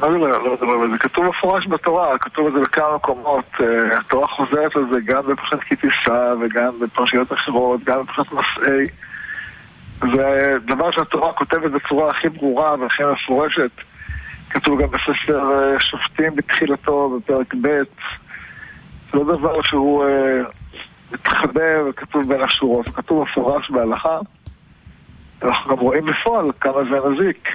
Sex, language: male, Hebrew